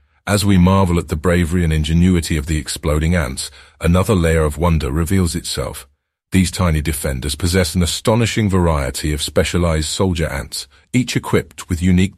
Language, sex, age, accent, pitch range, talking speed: English, male, 40-59, British, 75-90 Hz, 165 wpm